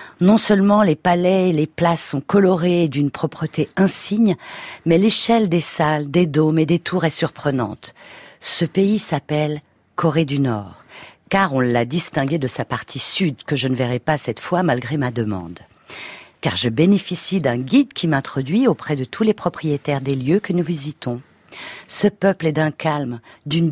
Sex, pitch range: female, 130-180 Hz